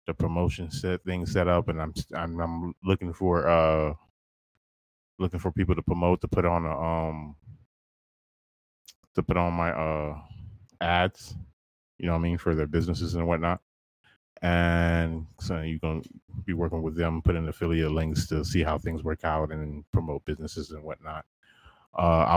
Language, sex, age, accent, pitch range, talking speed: English, male, 20-39, American, 80-105 Hz, 170 wpm